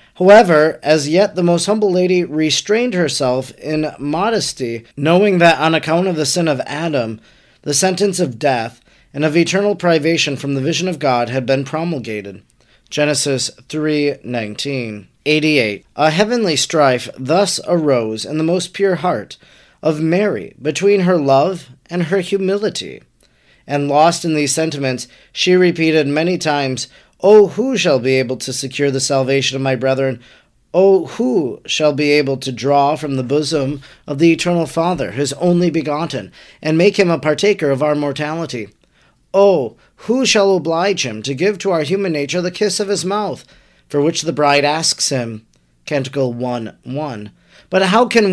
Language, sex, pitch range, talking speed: English, male, 140-185 Hz, 165 wpm